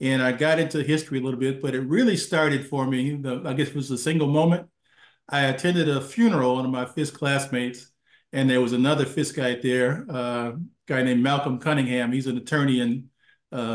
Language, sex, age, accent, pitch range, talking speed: English, male, 50-69, American, 125-145 Hz, 215 wpm